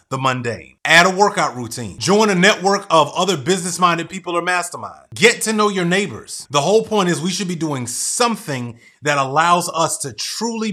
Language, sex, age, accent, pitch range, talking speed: English, male, 30-49, American, 140-190 Hz, 190 wpm